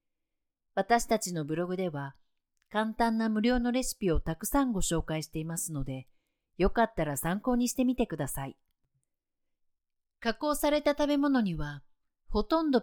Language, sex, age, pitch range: Japanese, female, 50-69, 155-240 Hz